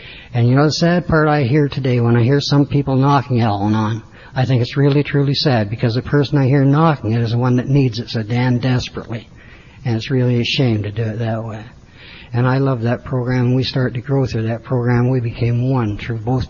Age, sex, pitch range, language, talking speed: 60-79, male, 120-140 Hz, English, 245 wpm